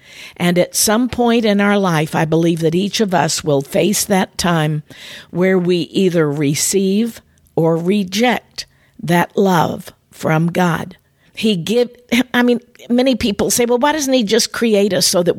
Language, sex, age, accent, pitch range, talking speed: English, female, 50-69, American, 175-225 Hz, 170 wpm